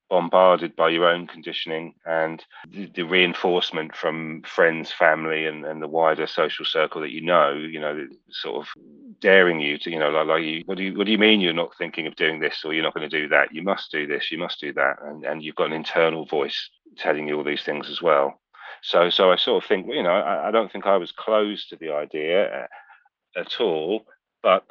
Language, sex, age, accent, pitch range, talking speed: English, male, 40-59, British, 80-95 Hz, 235 wpm